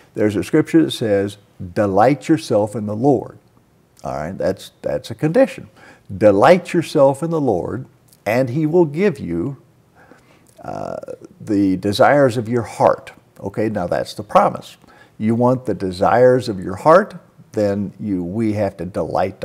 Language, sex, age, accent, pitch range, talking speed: English, male, 50-69, American, 105-140 Hz, 155 wpm